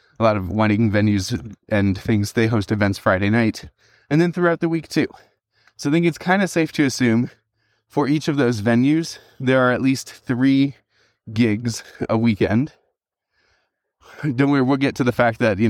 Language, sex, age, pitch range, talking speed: English, male, 20-39, 110-130 Hz, 190 wpm